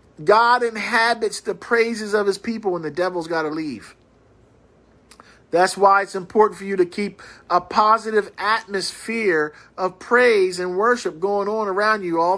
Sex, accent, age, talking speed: male, American, 50-69, 160 wpm